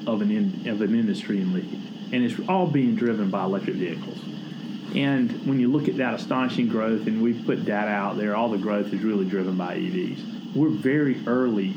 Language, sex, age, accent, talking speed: English, male, 40-59, American, 195 wpm